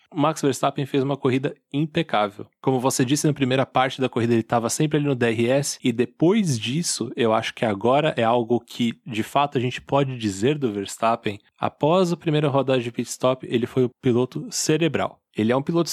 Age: 20-39